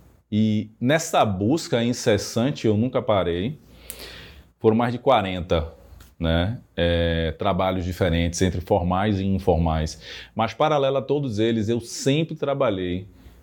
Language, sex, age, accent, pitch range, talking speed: Portuguese, male, 20-39, Brazilian, 100-165 Hz, 115 wpm